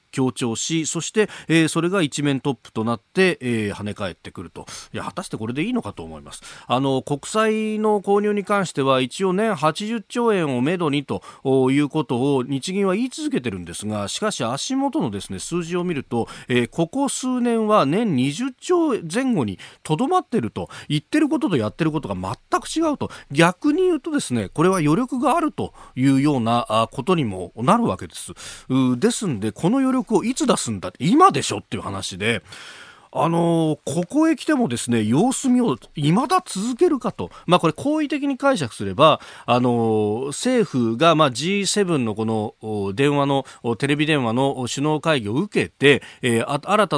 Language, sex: Japanese, male